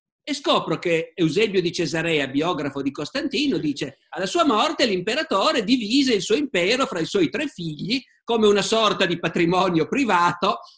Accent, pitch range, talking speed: native, 150-205 Hz, 160 wpm